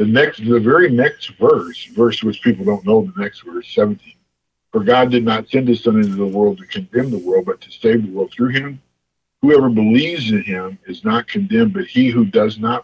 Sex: male